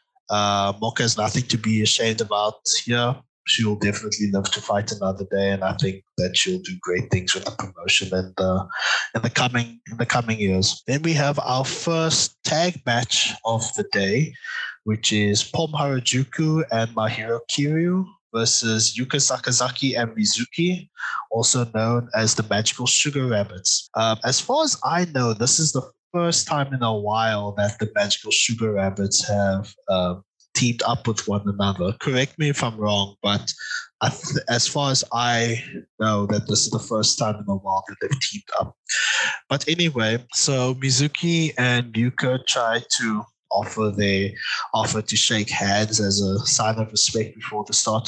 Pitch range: 105-140 Hz